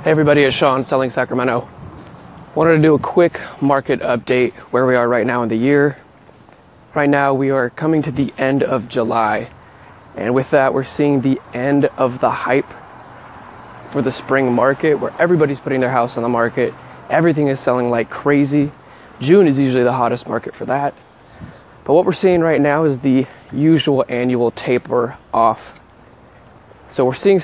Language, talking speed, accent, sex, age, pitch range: English, 175 wpm, American, male, 20-39, 125-150 Hz